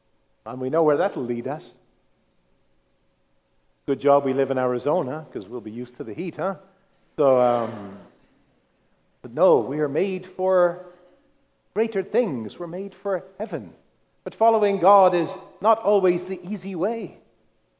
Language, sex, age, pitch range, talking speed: English, male, 50-69, 110-180 Hz, 150 wpm